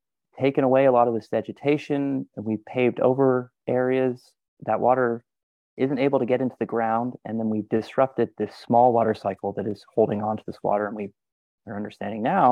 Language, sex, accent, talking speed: English, male, American, 195 wpm